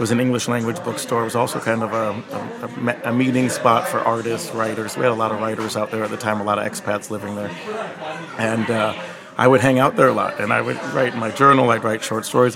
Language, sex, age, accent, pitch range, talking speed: English, male, 40-59, American, 115-130 Hz, 265 wpm